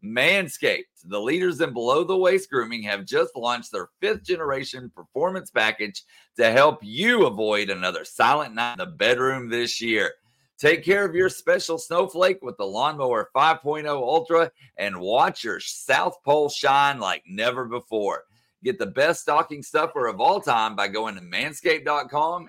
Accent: American